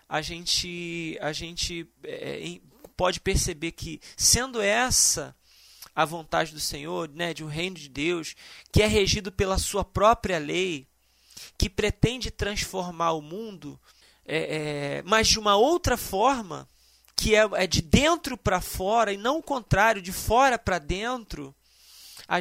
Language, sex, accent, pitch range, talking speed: Portuguese, male, Brazilian, 170-215 Hz, 135 wpm